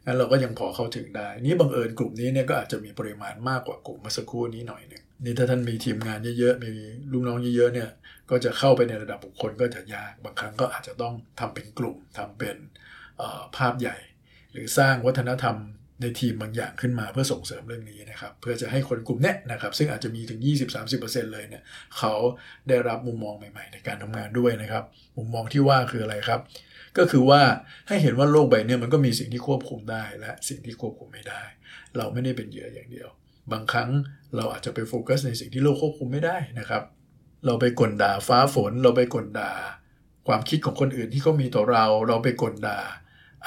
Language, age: Thai, 60-79